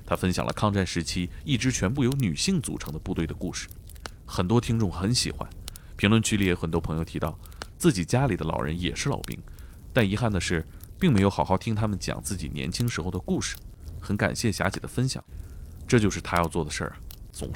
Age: 30-49